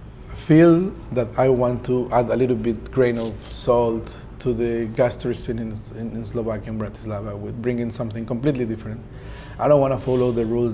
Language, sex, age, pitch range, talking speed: English, male, 40-59, 110-125 Hz, 185 wpm